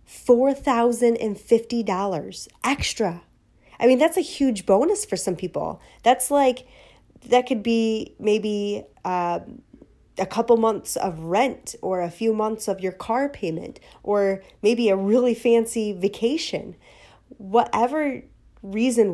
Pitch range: 185-240 Hz